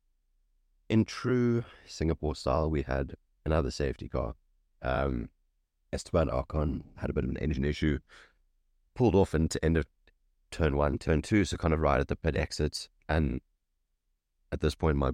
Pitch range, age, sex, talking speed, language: 70-80 Hz, 30-49, male, 165 wpm, English